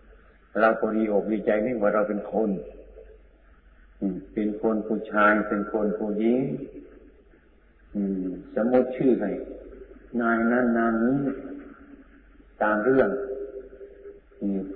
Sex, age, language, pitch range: male, 50-69, Thai, 105-120 Hz